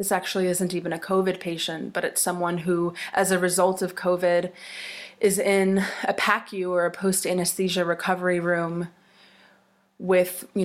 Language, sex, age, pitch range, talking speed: English, female, 20-39, 175-195 Hz, 160 wpm